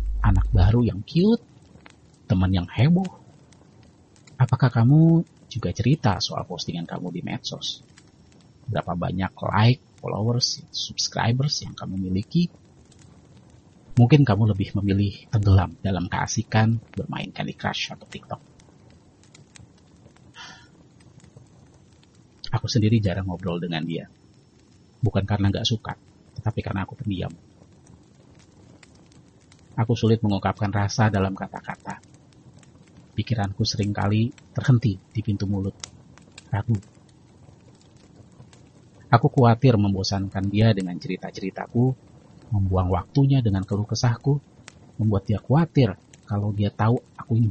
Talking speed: 105 wpm